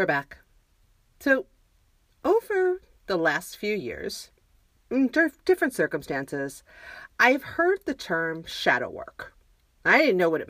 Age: 40-59